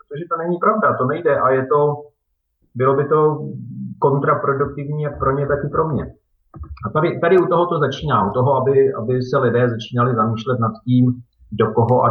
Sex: male